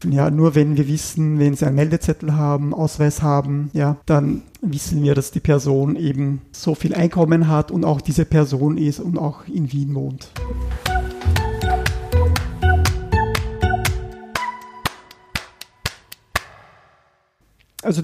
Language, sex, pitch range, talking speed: German, male, 145-170 Hz, 115 wpm